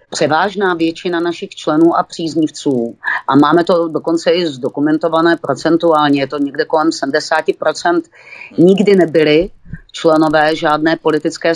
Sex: female